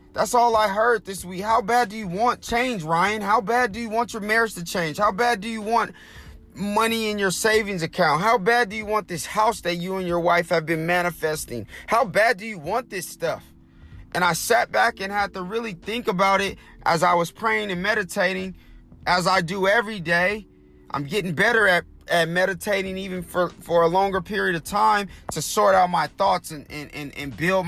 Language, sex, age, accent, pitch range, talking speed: English, male, 30-49, American, 175-225 Hz, 215 wpm